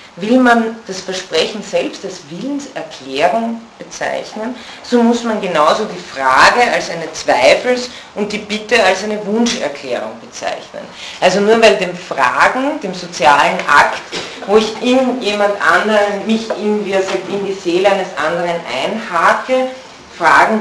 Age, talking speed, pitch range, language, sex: 40-59, 130 wpm, 175-215 Hz, German, female